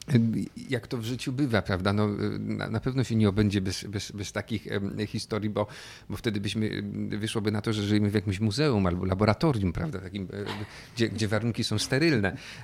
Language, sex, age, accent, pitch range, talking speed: Polish, male, 40-59, native, 105-120 Hz, 180 wpm